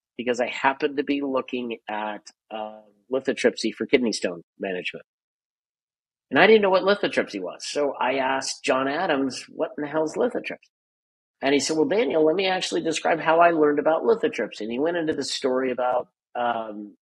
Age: 50-69